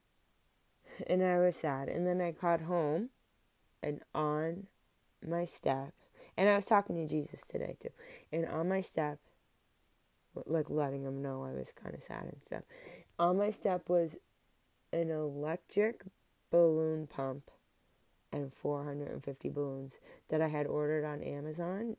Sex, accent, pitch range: female, American, 150-180 Hz